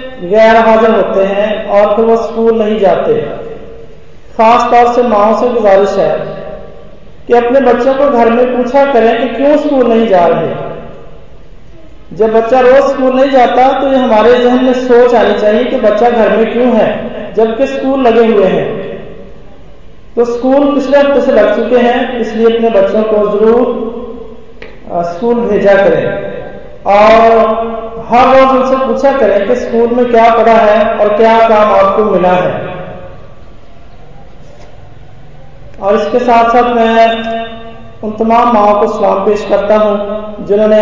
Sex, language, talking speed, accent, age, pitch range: male, Hindi, 155 wpm, native, 40-59, 205-240 Hz